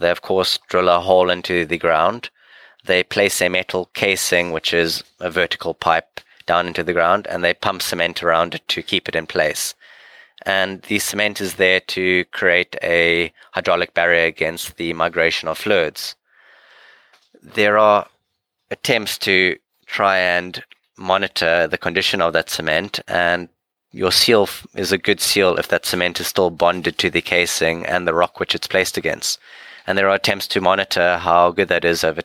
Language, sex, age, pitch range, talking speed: English, male, 20-39, 85-95 Hz, 175 wpm